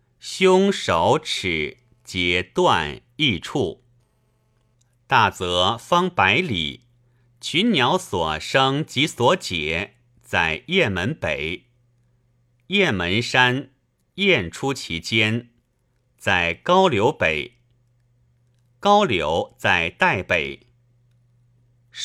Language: Chinese